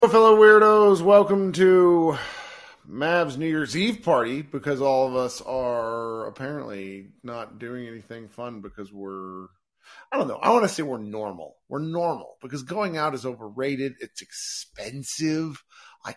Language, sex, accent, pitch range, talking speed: English, male, American, 110-145 Hz, 150 wpm